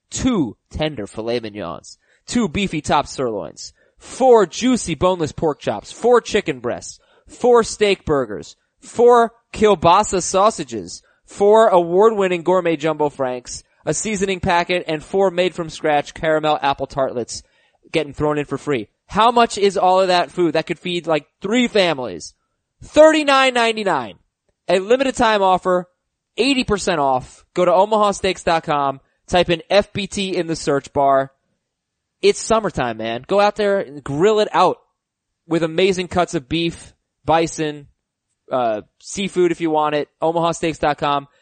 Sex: male